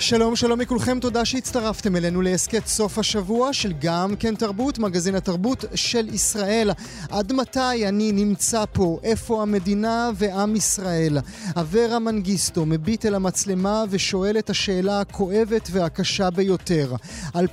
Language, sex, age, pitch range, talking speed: Hebrew, male, 30-49, 185-220 Hz, 130 wpm